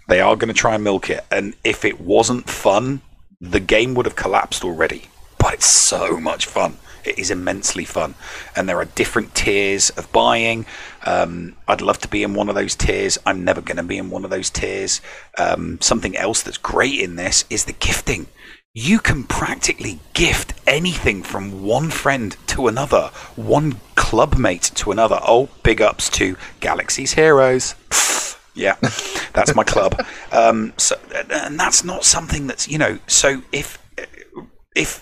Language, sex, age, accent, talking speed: English, male, 30-49, British, 175 wpm